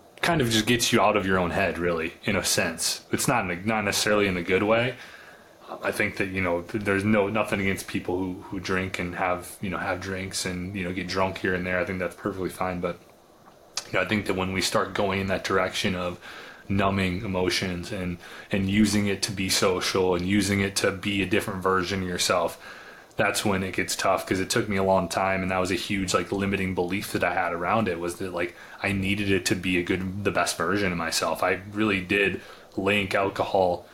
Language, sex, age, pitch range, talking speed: English, male, 20-39, 90-100 Hz, 235 wpm